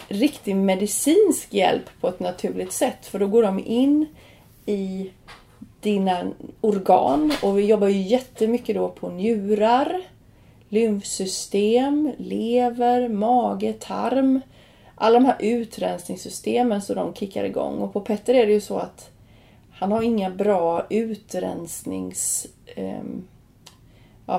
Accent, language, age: native, Swedish, 30-49